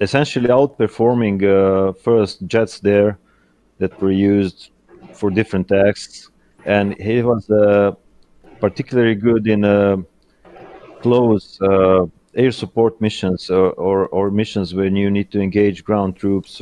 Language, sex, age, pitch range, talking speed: English, male, 30-49, 95-110 Hz, 130 wpm